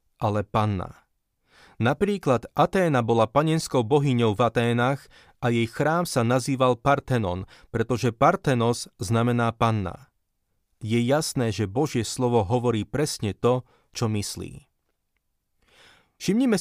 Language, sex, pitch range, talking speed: Slovak, male, 115-140 Hz, 110 wpm